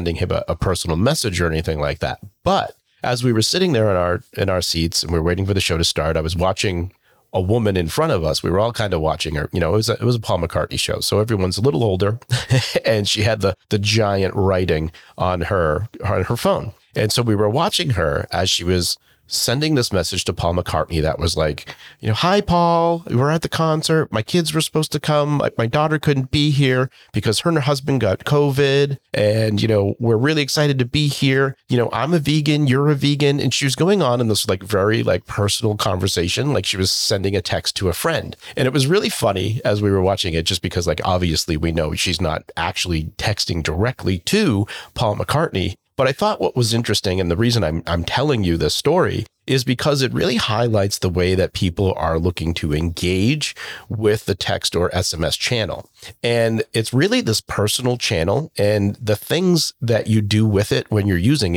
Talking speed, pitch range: 225 wpm, 90-135 Hz